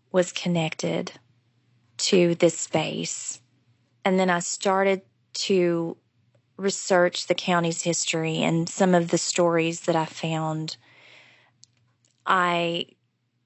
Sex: female